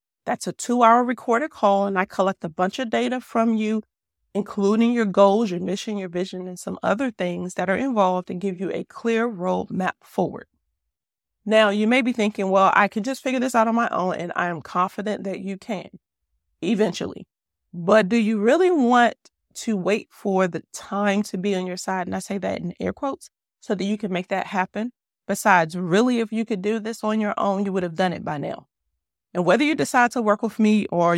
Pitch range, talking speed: 180-220 Hz, 220 wpm